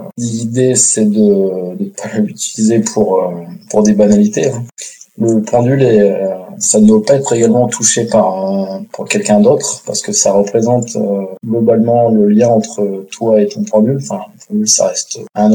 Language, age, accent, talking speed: French, 20-39, French, 180 wpm